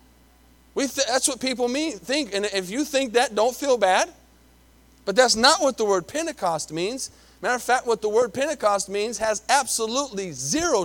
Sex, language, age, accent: male, English, 40-59, American